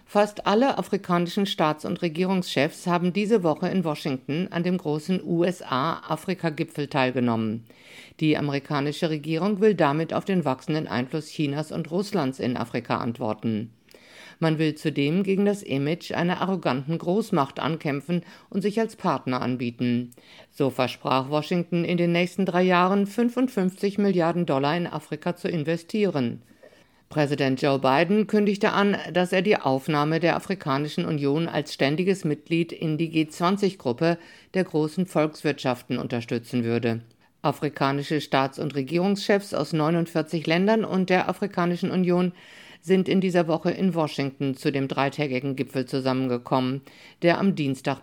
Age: 50-69